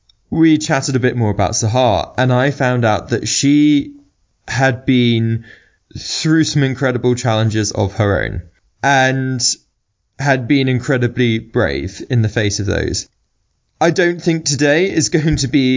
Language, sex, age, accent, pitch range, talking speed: English, male, 20-39, British, 110-135 Hz, 150 wpm